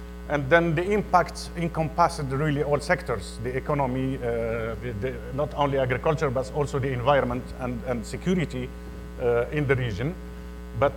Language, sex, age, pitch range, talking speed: English, male, 50-69, 115-155 Hz, 150 wpm